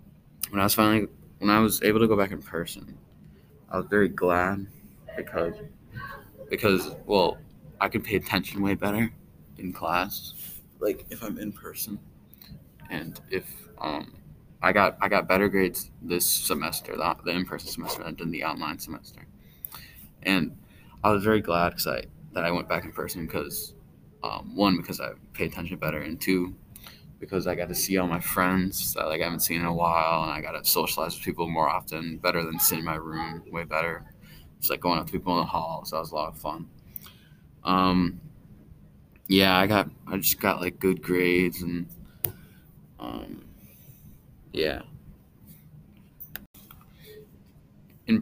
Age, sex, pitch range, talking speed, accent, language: 20-39, male, 85-100 Hz, 170 wpm, American, English